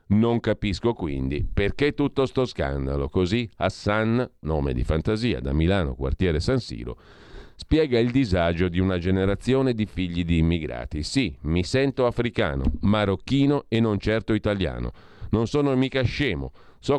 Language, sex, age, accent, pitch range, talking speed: Italian, male, 50-69, native, 80-115 Hz, 145 wpm